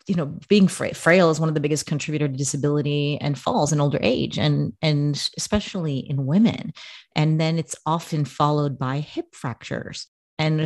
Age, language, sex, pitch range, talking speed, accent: 30-49, English, female, 140-170 Hz, 175 wpm, American